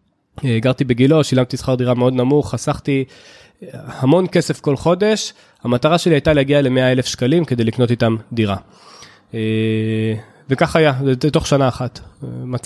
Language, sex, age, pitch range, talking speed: Hebrew, male, 20-39, 120-155 Hz, 130 wpm